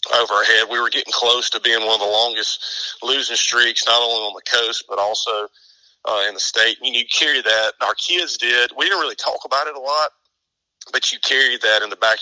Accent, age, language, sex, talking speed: American, 40-59, English, male, 235 wpm